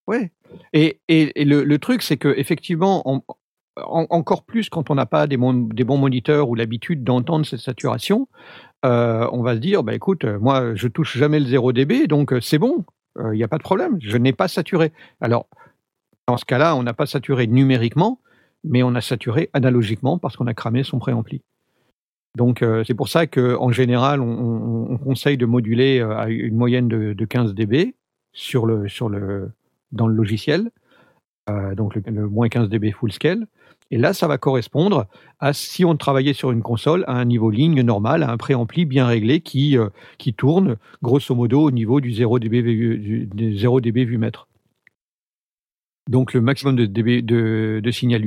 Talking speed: 195 wpm